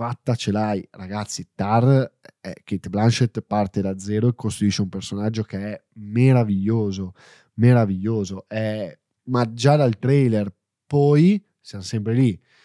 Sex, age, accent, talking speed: male, 10-29, native, 135 wpm